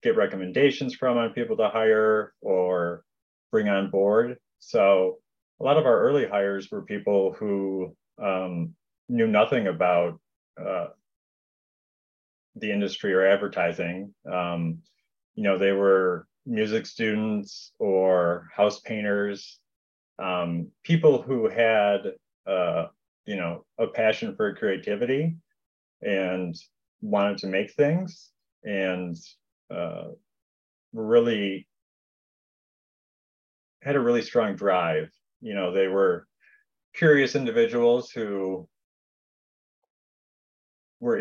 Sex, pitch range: male, 90-115 Hz